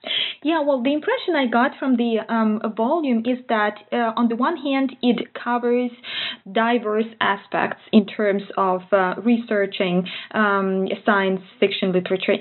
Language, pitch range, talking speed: English, 200-250 Hz, 145 wpm